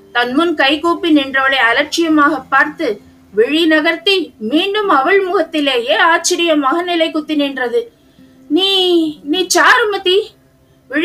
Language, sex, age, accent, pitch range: Tamil, female, 20-39, native, 245-320 Hz